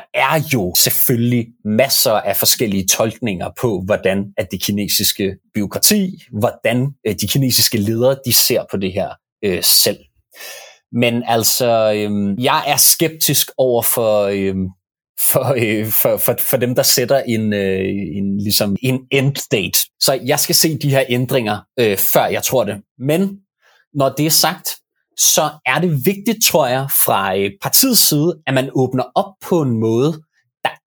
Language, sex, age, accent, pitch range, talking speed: Danish, male, 30-49, native, 100-140 Hz, 160 wpm